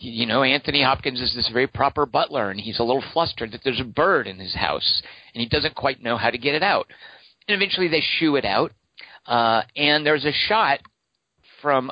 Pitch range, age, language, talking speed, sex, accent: 115-160 Hz, 50-69, English, 215 wpm, male, American